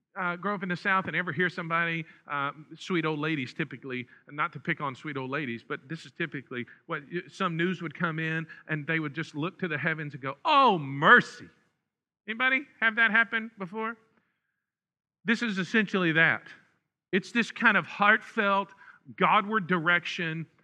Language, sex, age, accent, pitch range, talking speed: English, male, 50-69, American, 145-185 Hz, 175 wpm